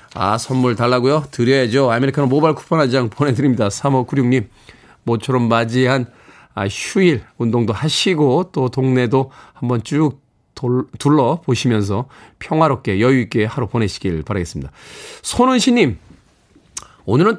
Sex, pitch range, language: male, 120-170 Hz, Korean